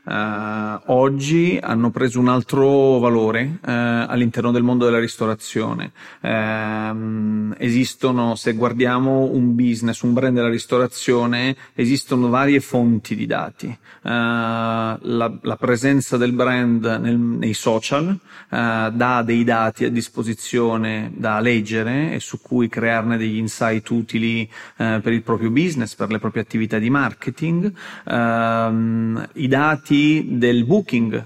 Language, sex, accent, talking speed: Italian, male, native, 115 wpm